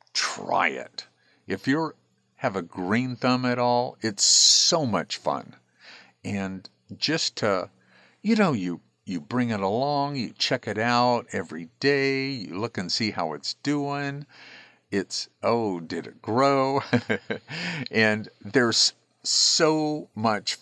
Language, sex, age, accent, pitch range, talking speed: English, male, 50-69, American, 85-120 Hz, 135 wpm